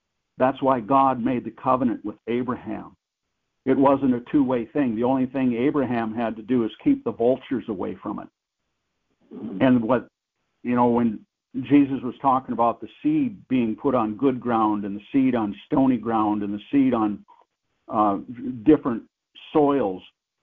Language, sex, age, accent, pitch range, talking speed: English, male, 60-79, American, 115-140 Hz, 165 wpm